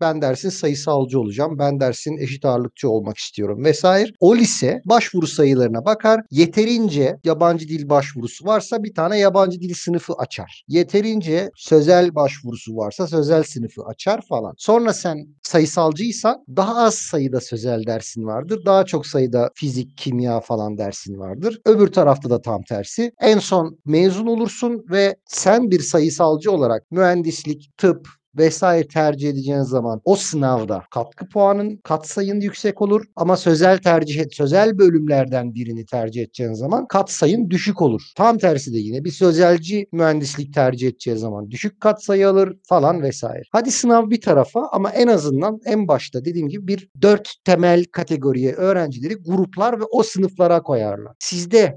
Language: Turkish